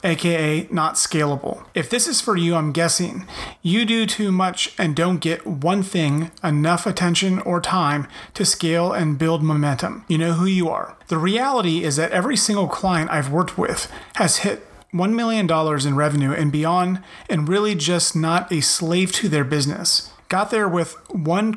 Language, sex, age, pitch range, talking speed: English, male, 30-49, 160-190 Hz, 180 wpm